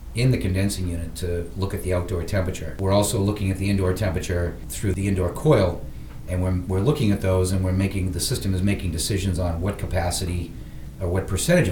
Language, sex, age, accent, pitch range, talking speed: English, male, 40-59, American, 85-100 Hz, 215 wpm